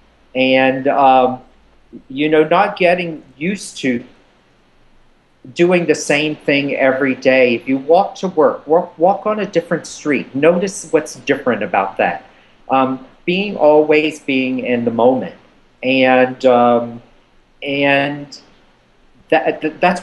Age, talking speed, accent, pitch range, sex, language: 40-59, 125 wpm, American, 125-155 Hz, male, English